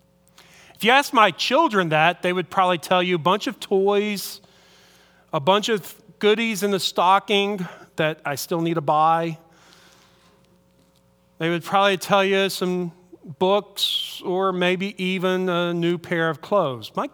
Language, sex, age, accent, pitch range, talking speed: English, male, 40-59, American, 165-215 Hz, 155 wpm